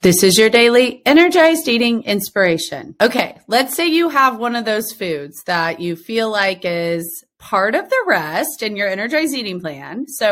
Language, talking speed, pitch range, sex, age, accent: English, 180 wpm, 200-270 Hz, female, 30-49, American